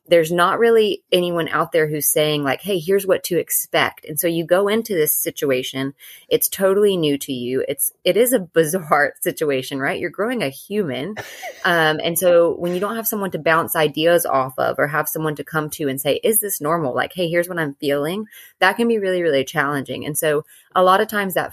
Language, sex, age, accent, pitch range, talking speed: English, female, 30-49, American, 155-190 Hz, 225 wpm